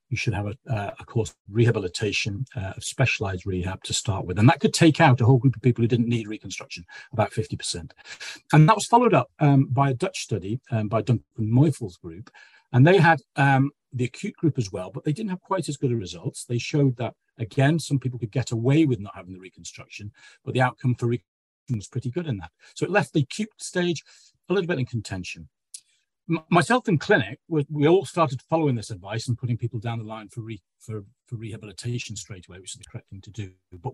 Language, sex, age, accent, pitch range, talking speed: English, male, 40-59, British, 110-140 Hz, 230 wpm